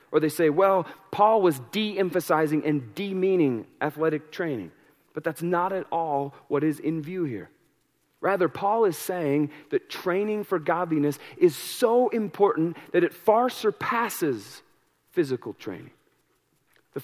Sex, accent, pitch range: male, American, 155-205 Hz